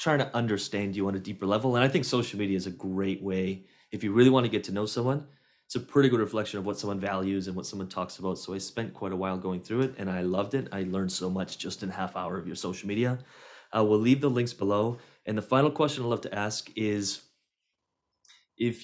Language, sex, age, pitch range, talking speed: English, male, 30-49, 100-120 Hz, 260 wpm